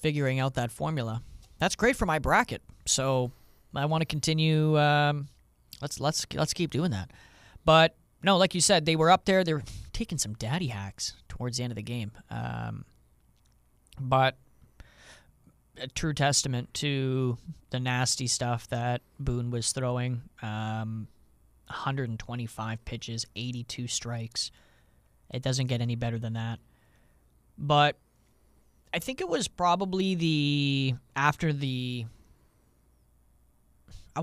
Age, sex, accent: 20-39, male, American